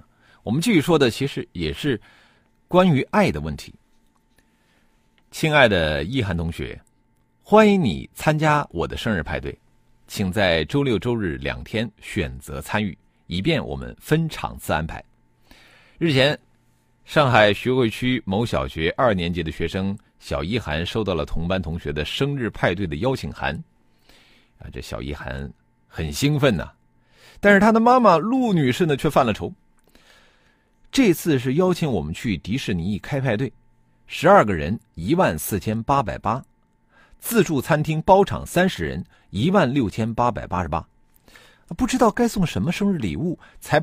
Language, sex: Chinese, male